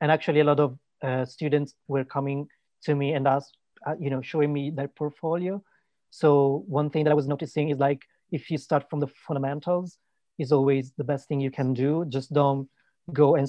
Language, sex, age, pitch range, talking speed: English, male, 30-49, 140-155 Hz, 210 wpm